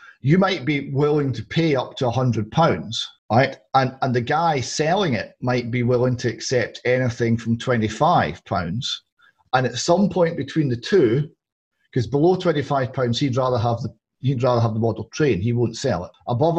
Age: 40-59